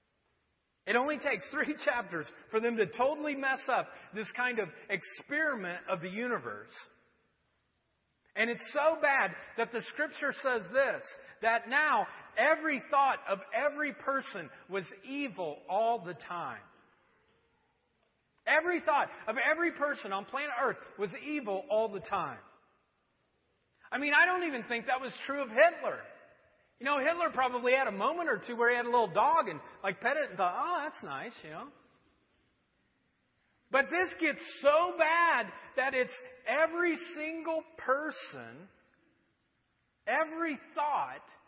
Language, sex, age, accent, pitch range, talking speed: English, male, 40-59, American, 205-295 Hz, 145 wpm